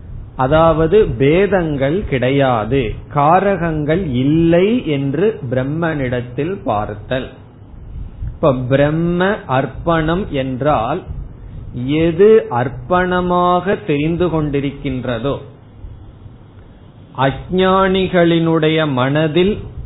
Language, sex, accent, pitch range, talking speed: Tamil, male, native, 120-165 Hz, 55 wpm